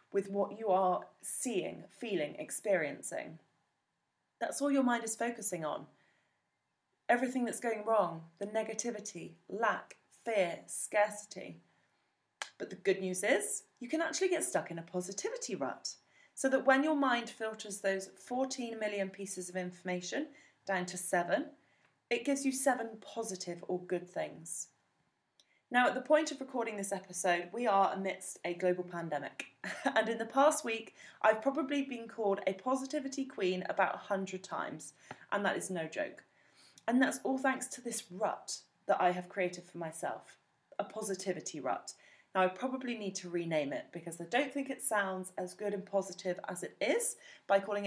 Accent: British